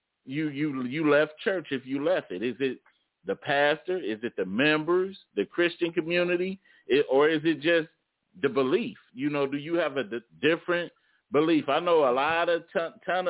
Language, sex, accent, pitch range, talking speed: English, male, American, 125-160 Hz, 195 wpm